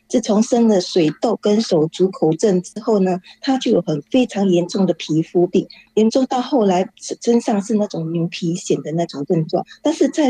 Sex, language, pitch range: female, Chinese, 185-240 Hz